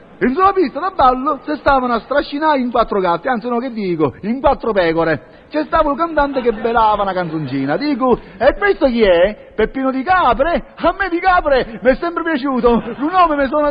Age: 40-59